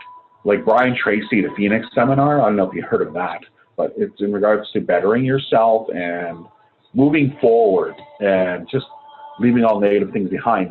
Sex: male